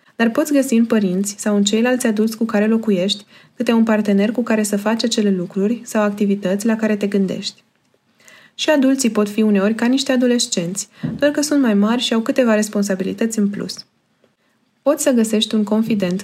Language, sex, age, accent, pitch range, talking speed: Romanian, female, 20-39, native, 200-230 Hz, 190 wpm